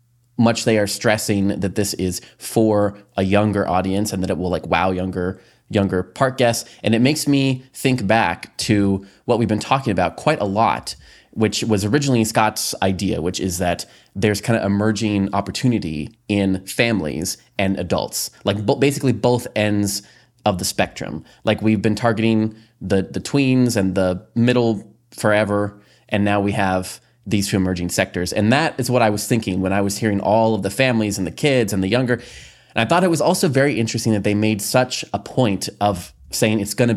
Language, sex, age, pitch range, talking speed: English, male, 20-39, 95-115 Hz, 195 wpm